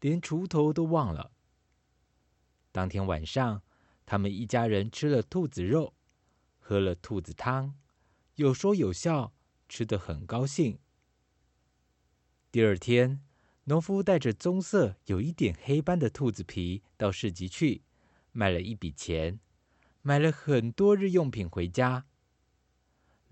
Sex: male